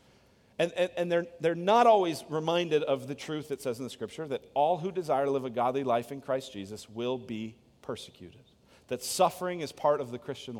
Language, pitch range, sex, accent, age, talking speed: English, 125-175 Hz, male, American, 40-59, 215 wpm